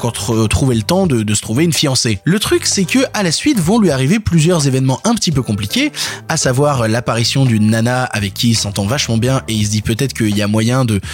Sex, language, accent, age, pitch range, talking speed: male, French, French, 20-39, 120-175 Hz, 250 wpm